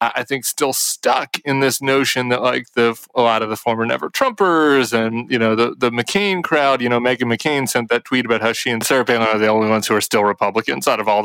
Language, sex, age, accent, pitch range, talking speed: English, male, 30-49, American, 120-145 Hz, 255 wpm